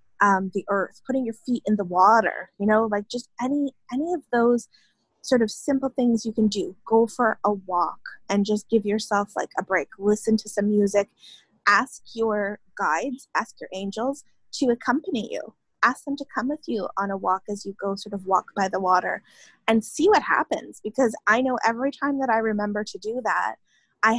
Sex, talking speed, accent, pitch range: female, 205 wpm, American, 205-240 Hz